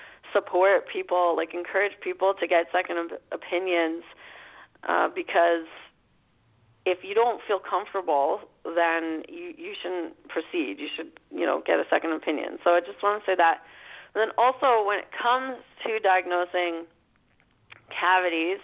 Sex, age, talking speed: female, 30-49, 145 wpm